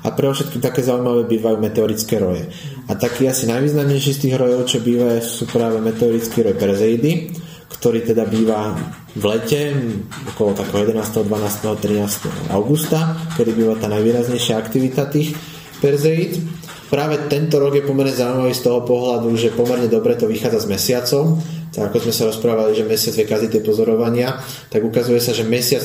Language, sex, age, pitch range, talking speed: Slovak, male, 30-49, 110-140 Hz, 165 wpm